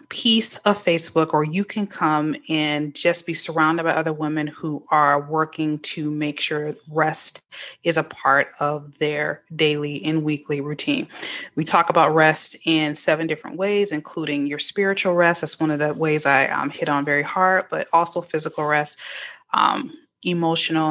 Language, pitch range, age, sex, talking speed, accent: English, 155-180 Hz, 20-39, female, 170 wpm, American